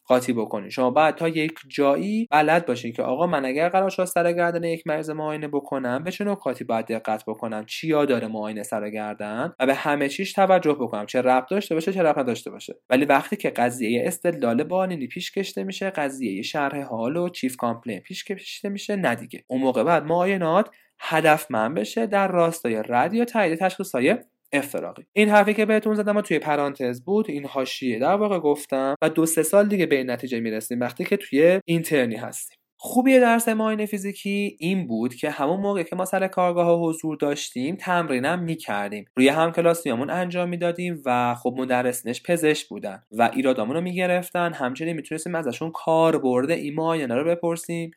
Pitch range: 130-180 Hz